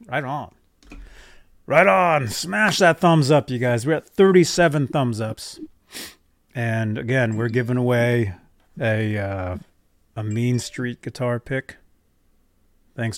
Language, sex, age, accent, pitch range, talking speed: English, male, 30-49, American, 95-135 Hz, 125 wpm